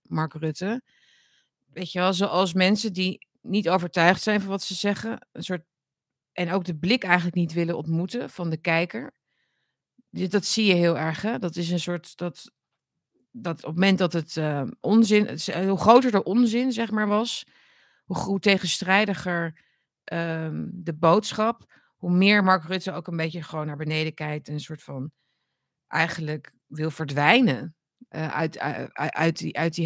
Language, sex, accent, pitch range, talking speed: Dutch, female, Dutch, 160-195 Hz, 175 wpm